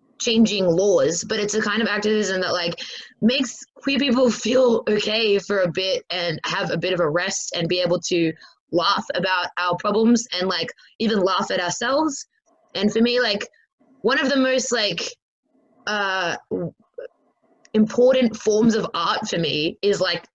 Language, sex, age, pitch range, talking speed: English, female, 20-39, 180-235 Hz, 170 wpm